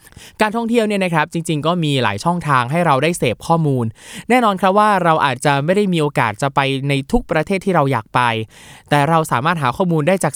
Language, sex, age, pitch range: Thai, male, 20-39, 140-190 Hz